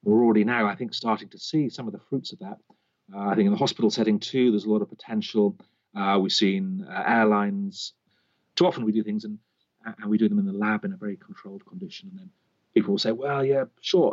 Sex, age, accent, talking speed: male, 40-59, British, 245 wpm